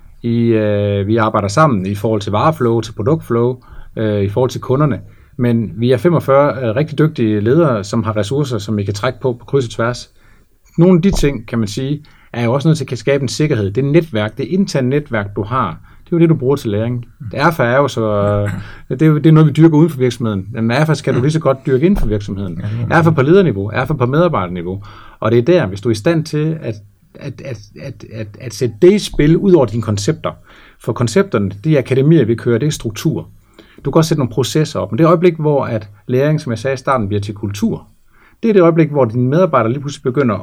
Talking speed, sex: 250 wpm, male